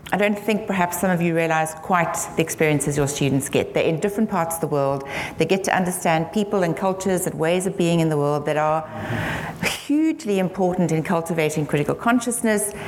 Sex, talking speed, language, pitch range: female, 200 wpm, English, 155-190 Hz